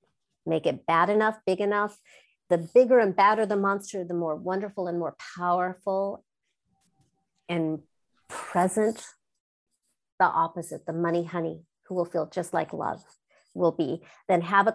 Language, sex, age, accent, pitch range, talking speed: English, female, 50-69, American, 180-245 Hz, 145 wpm